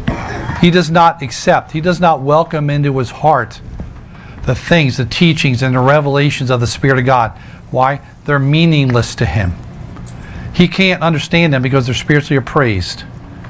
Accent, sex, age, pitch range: American, male, 40-59, 130-155 Hz